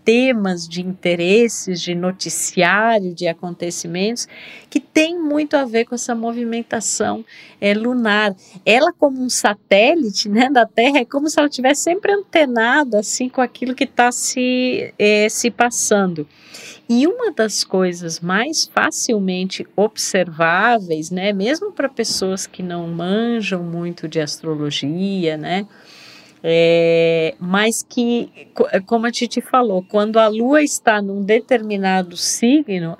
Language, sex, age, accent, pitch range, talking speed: Portuguese, female, 50-69, Brazilian, 180-235 Hz, 130 wpm